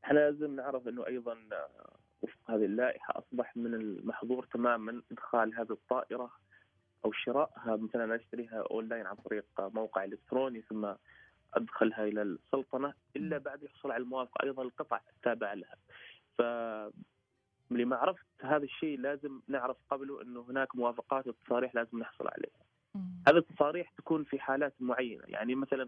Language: Arabic